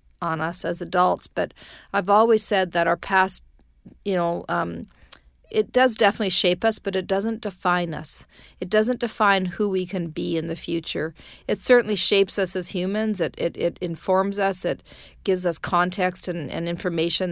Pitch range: 165-195 Hz